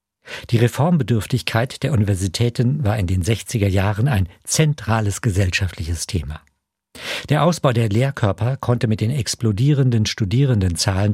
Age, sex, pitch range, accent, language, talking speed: 50-69, male, 100-125 Hz, German, German, 120 wpm